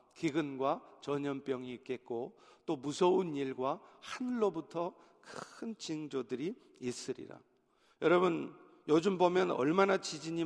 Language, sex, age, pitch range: Korean, male, 50-69, 155-195 Hz